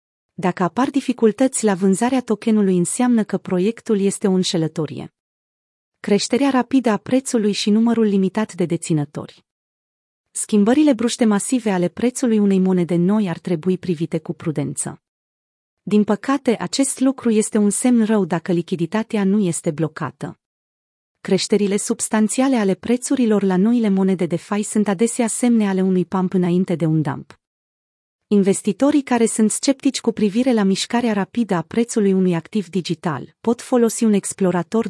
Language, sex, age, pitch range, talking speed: Romanian, female, 30-49, 175-225 Hz, 145 wpm